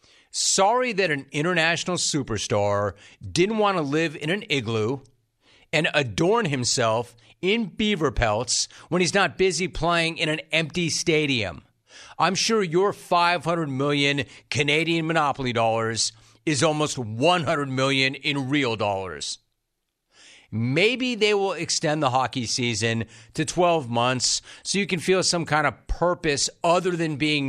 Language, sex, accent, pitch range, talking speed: English, male, American, 115-155 Hz, 140 wpm